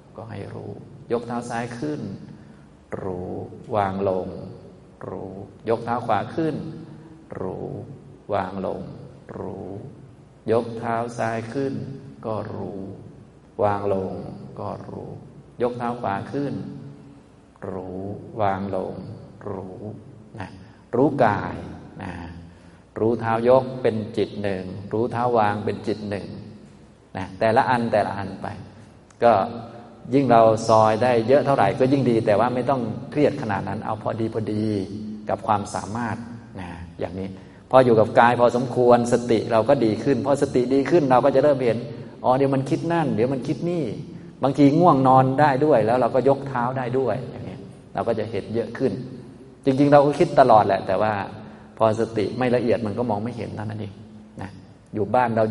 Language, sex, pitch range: Thai, male, 100-125 Hz